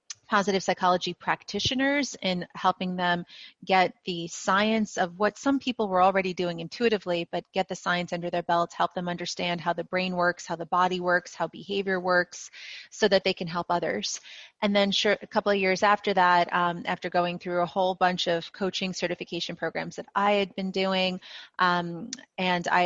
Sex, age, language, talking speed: female, 30-49, English, 185 wpm